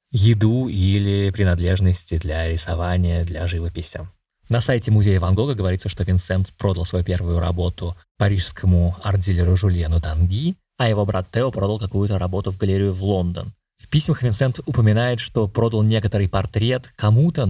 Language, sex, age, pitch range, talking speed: Russian, male, 20-39, 90-115 Hz, 145 wpm